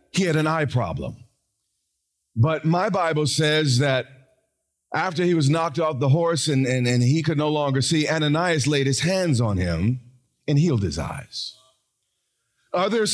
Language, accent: English, American